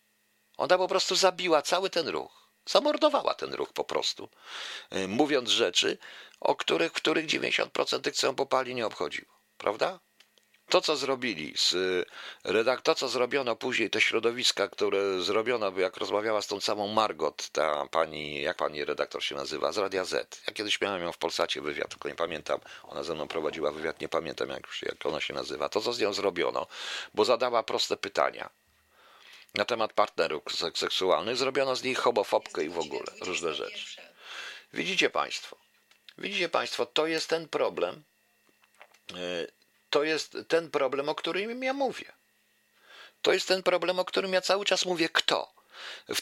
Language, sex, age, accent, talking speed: Polish, male, 50-69, native, 165 wpm